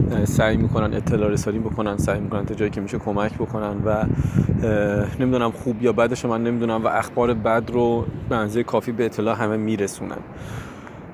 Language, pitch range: Persian, 110-130 Hz